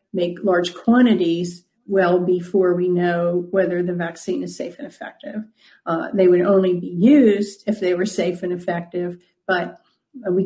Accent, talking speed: American, 160 wpm